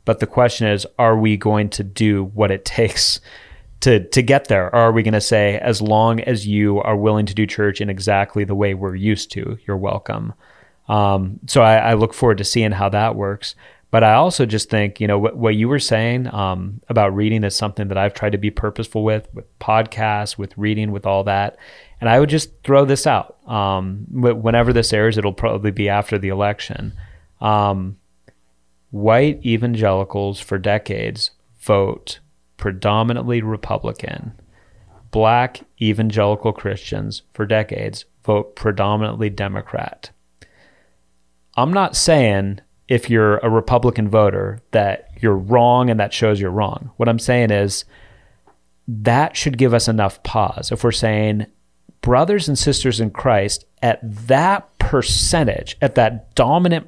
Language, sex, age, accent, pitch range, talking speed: English, male, 30-49, American, 100-115 Hz, 165 wpm